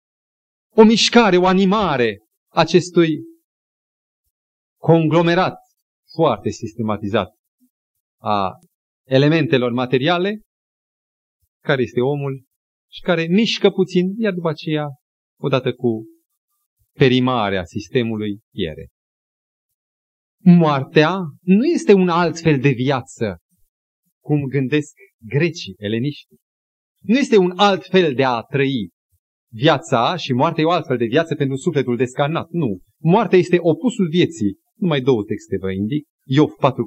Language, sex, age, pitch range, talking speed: Romanian, male, 30-49, 115-175 Hz, 110 wpm